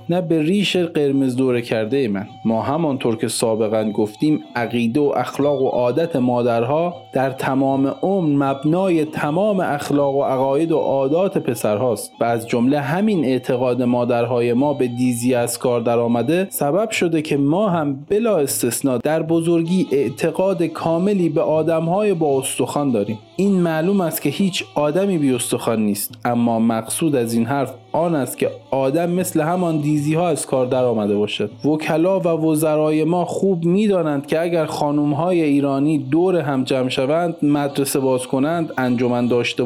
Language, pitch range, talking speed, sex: Persian, 130-170 Hz, 155 wpm, male